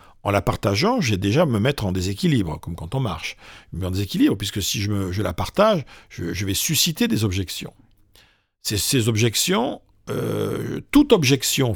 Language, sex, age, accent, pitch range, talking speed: French, male, 50-69, French, 100-140 Hz, 185 wpm